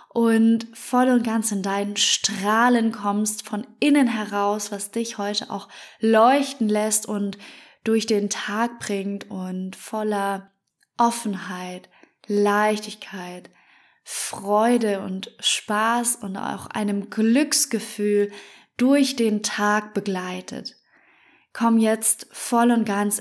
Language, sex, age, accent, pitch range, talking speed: German, female, 20-39, German, 200-230 Hz, 110 wpm